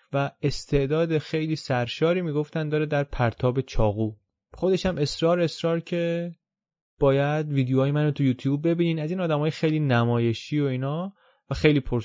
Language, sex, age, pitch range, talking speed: Persian, male, 30-49, 120-155 Hz, 150 wpm